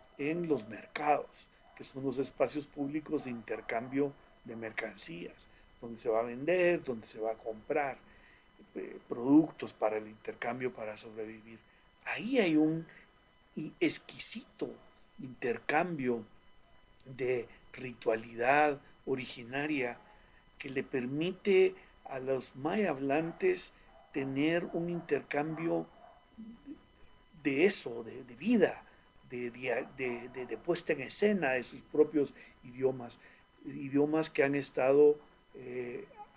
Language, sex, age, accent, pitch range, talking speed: Spanish, male, 50-69, Mexican, 120-155 Hz, 110 wpm